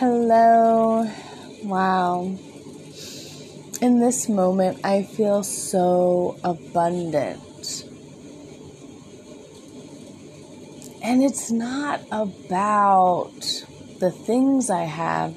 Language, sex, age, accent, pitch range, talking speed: English, female, 20-39, American, 175-230 Hz, 65 wpm